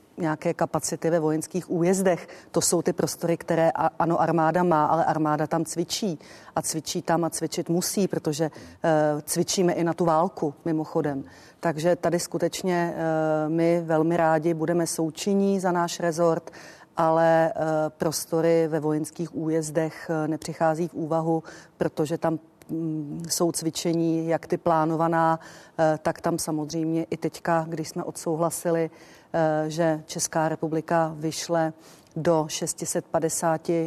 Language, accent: Czech, native